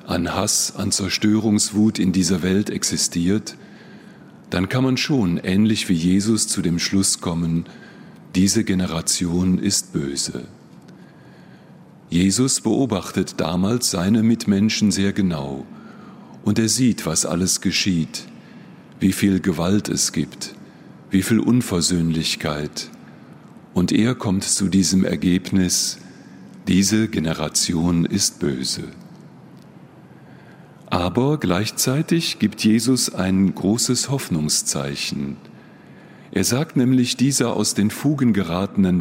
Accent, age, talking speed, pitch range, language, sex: German, 40-59, 105 wpm, 90-110 Hz, German, male